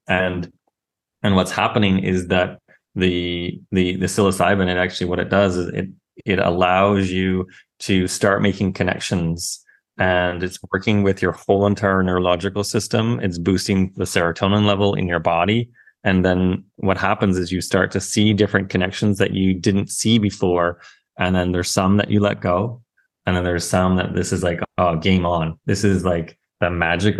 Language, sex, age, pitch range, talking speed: English, male, 20-39, 90-100 Hz, 180 wpm